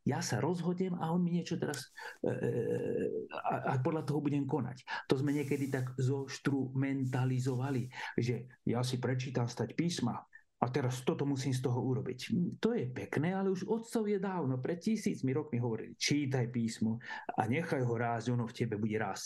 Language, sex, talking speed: Slovak, male, 170 wpm